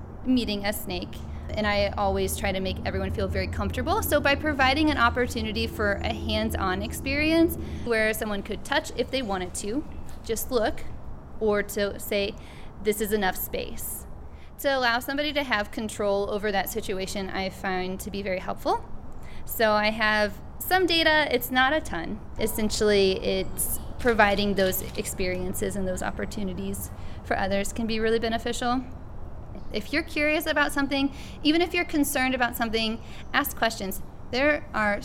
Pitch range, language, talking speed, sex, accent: 200-255 Hz, English, 160 wpm, female, American